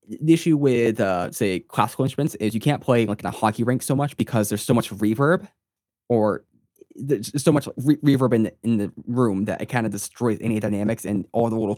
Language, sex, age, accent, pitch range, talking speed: English, male, 20-39, American, 105-125 Hz, 230 wpm